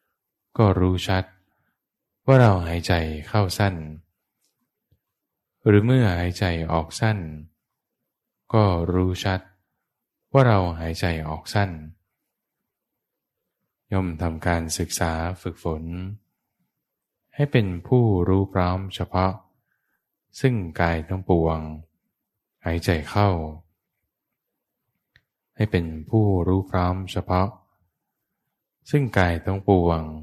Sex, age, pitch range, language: male, 20-39, 80-100 Hz, English